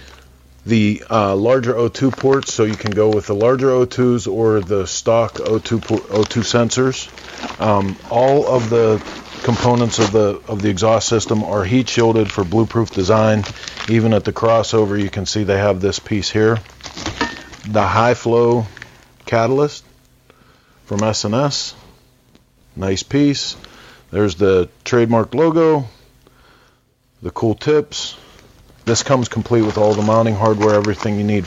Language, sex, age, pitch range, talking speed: English, male, 40-59, 100-120 Hz, 145 wpm